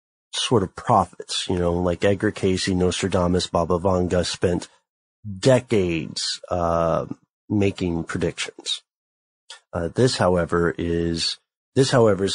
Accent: American